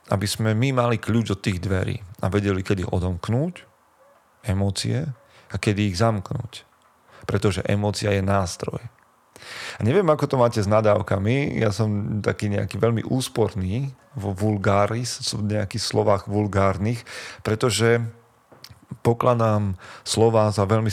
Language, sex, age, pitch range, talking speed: Slovak, male, 30-49, 100-115 Hz, 130 wpm